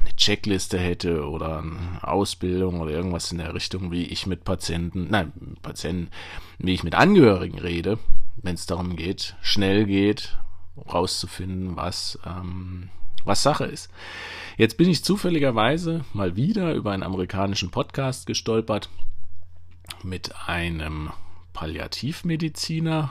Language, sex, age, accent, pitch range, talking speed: German, male, 40-59, German, 90-115 Hz, 120 wpm